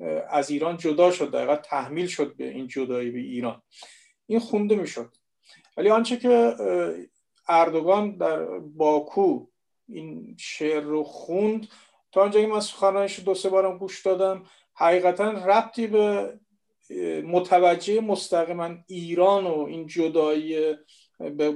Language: Persian